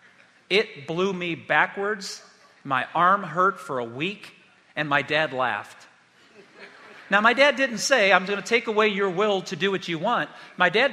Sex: male